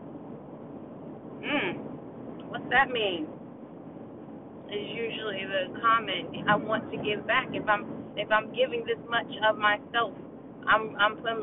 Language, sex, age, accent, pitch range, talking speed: English, female, 30-49, American, 210-245 Hz, 125 wpm